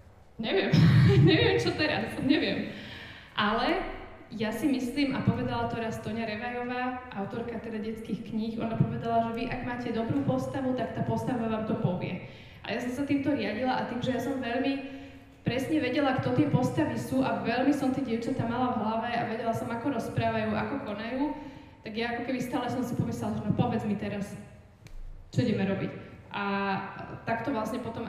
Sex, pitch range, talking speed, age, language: female, 200-245 Hz, 185 wpm, 20-39, Slovak